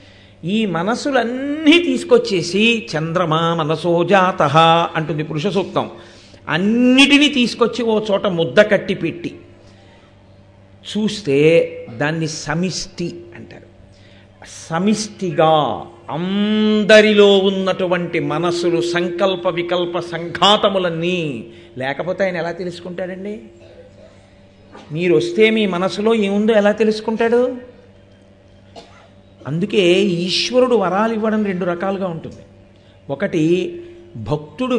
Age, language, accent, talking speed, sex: 50-69, Telugu, native, 80 wpm, male